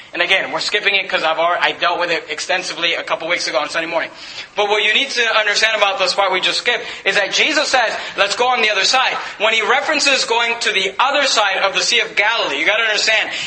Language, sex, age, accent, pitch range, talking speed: English, male, 30-49, American, 195-245 Hz, 260 wpm